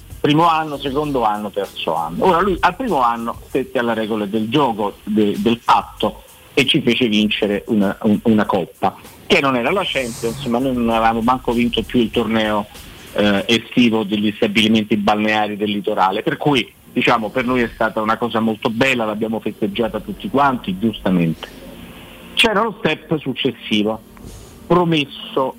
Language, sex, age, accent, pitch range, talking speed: Italian, male, 50-69, native, 110-155 Hz, 160 wpm